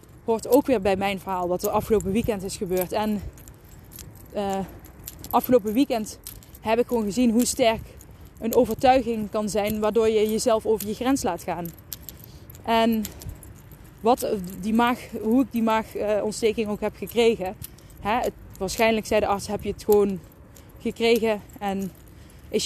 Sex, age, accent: female, 20-39, Dutch